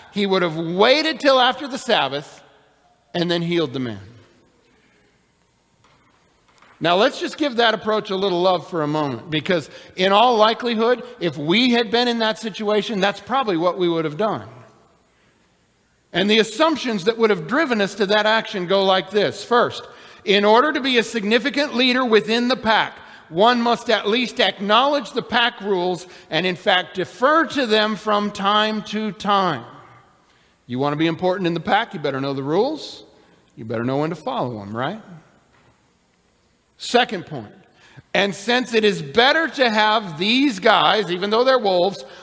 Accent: American